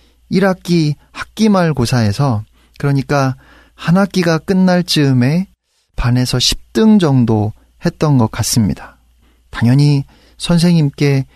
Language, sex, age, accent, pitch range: Korean, male, 30-49, native, 120-175 Hz